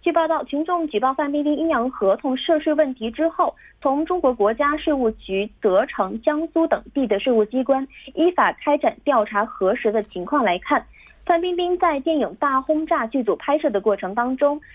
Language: Korean